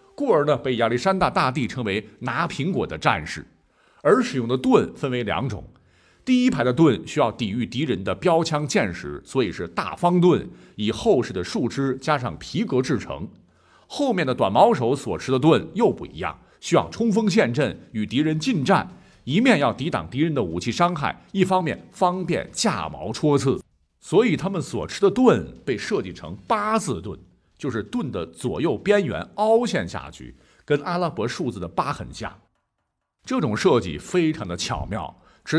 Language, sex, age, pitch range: Chinese, male, 50-69, 115-180 Hz